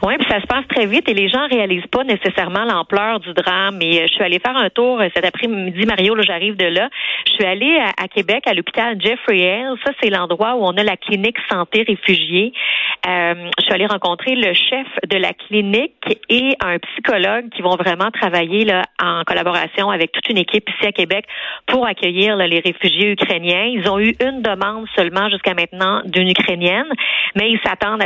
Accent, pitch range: Canadian, 185-225 Hz